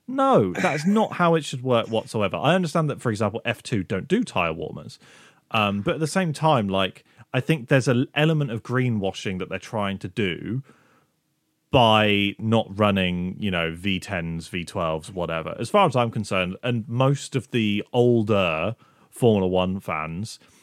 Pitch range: 100-145 Hz